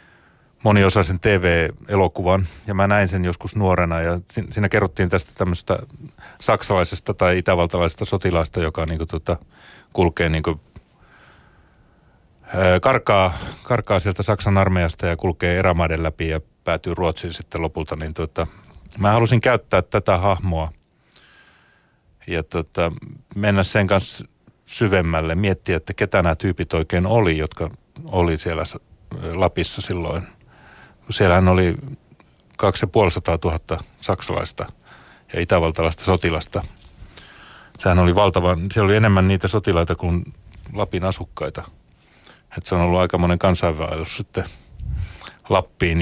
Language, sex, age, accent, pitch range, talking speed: Finnish, male, 30-49, native, 85-100 Hz, 115 wpm